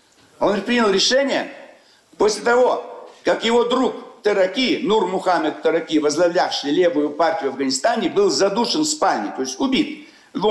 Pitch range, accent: 205-270 Hz, native